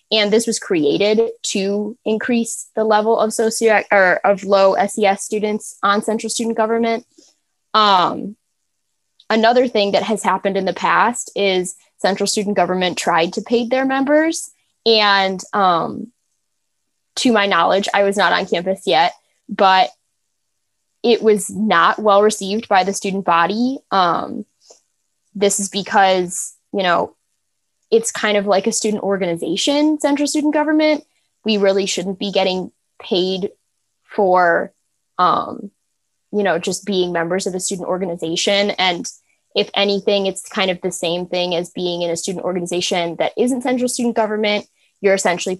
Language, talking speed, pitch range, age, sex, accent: English, 145 wpm, 185-225 Hz, 10-29, female, American